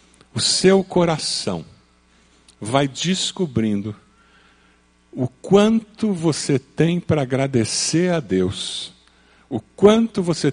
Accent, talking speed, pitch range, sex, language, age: Brazilian, 90 wpm, 95-145 Hz, male, Portuguese, 50-69